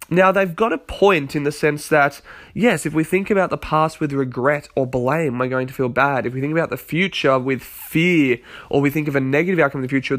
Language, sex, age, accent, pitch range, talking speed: English, male, 20-39, Australian, 130-175 Hz, 255 wpm